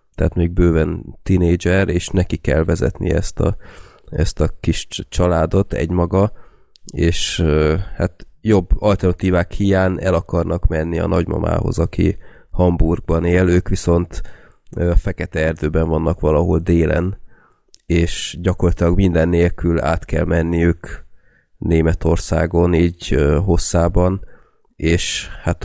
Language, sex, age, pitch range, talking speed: Hungarian, male, 30-49, 80-95 Hz, 110 wpm